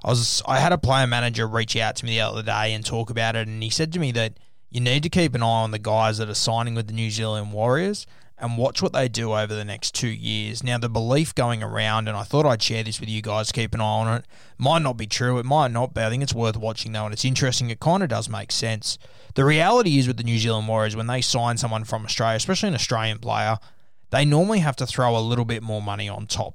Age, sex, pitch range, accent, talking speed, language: 20-39, male, 110-125 Hz, Australian, 280 wpm, English